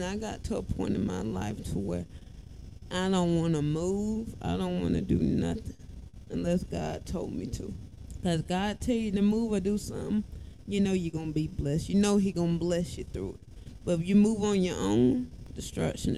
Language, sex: English, female